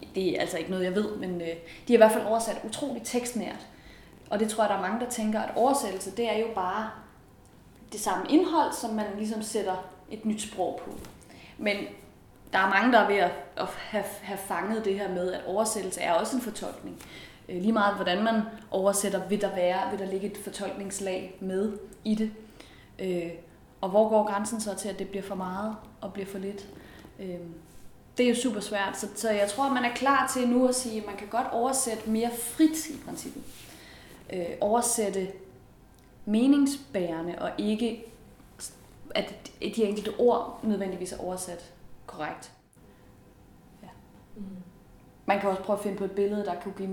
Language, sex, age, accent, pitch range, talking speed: Danish, female, 20-39, native, 190-225 Hz, 185 wpm